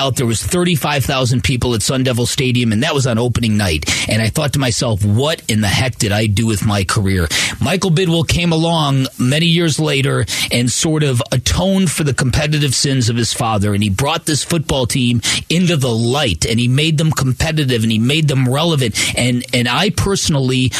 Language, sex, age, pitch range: English, male, 40-59, 120-155 Hz